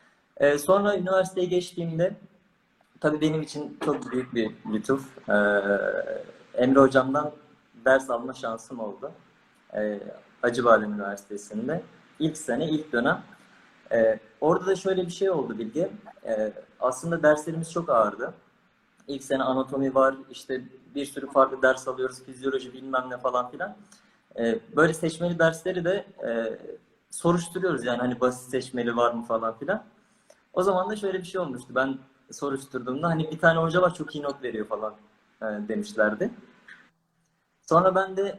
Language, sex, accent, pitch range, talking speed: Turkish, male, native, 125-175 Hz, 130 wpm